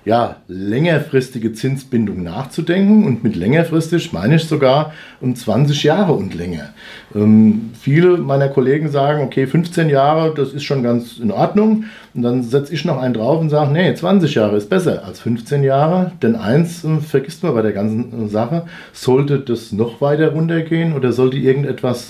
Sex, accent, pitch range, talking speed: male, German, 115-155 Hz, 170 wpm